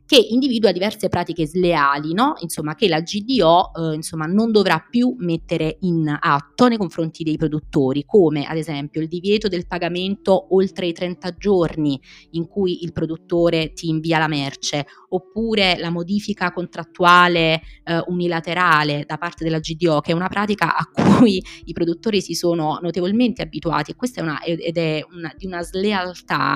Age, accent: 20-39, native